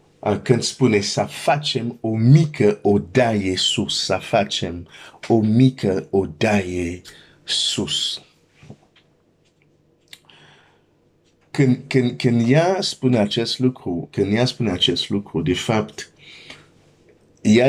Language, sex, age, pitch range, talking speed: Romanian, male, 50-69, 100-130 Hz, 95 wpm